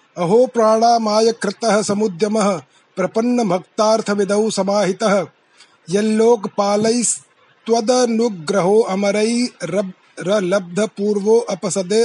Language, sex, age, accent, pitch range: Hindi, male, 30-49, native, 195-235 Hz